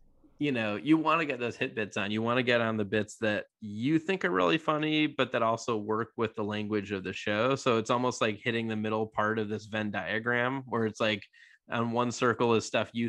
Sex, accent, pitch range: male, American, 105-120 Hz